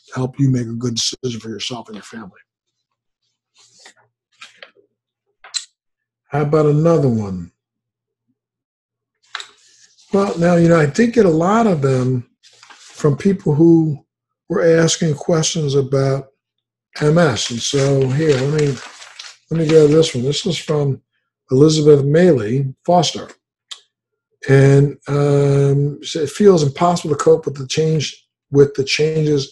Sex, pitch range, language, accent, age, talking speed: male, 135-160 Hz, English, American, 60-79, 130 wpm